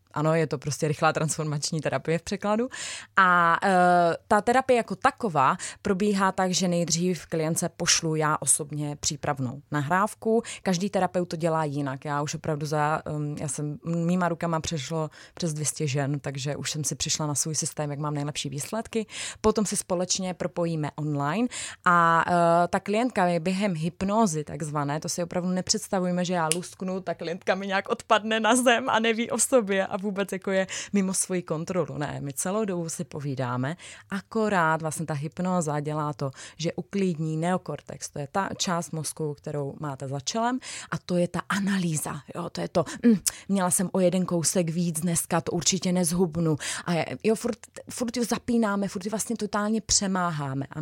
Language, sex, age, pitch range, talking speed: Czech, female, 20-39, 155-200 Hz, 175 wpm